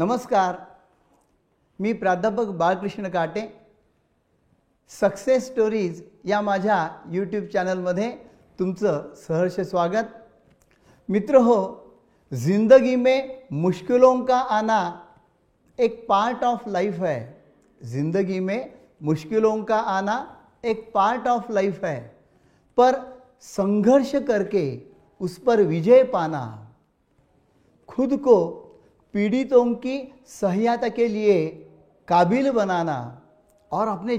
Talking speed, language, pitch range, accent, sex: 95 wpm, Marathi, 180-240 Hz, native, male